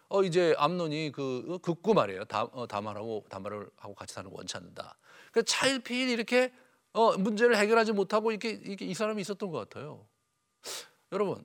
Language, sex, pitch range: Korean, male, 140-220 Hz